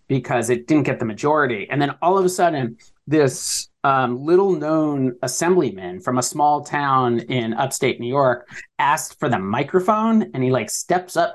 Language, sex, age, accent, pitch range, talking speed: English, male, 30-49, American, 125-170 Hz, 180 wpm